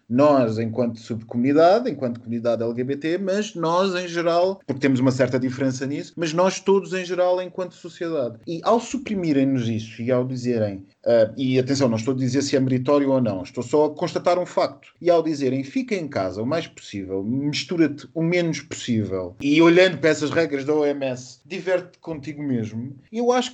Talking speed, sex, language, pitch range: 185 wpm, male, Portuguese, 135-180 Hz